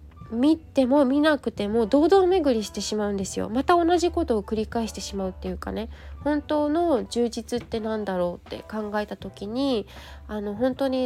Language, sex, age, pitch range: Japanese, female, 20-39, 205-275 Hz